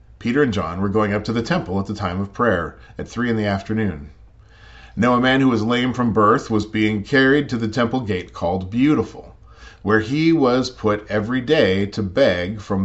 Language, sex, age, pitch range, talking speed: English, male, 40-59, 100-135 Hz, 210 wpm